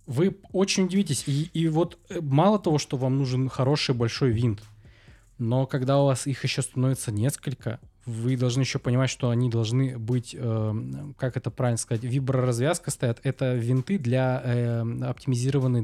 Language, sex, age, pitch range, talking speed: Russian, male, 20-39, 120-145 Hz, 155 wpm